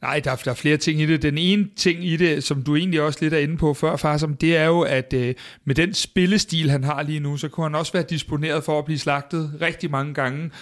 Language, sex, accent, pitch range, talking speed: Danish, male, native, 150-180 Hz, 260 wpm